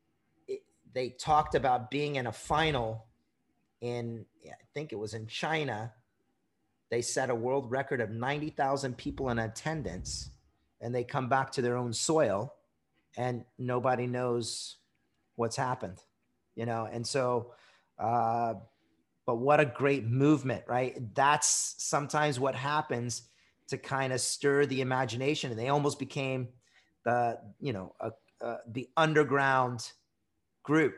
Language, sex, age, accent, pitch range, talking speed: English, male, 30-49, American, 115-140 Hz, 135 wpm